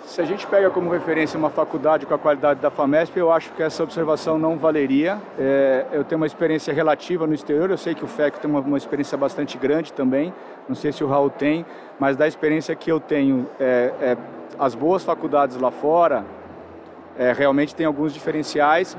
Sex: male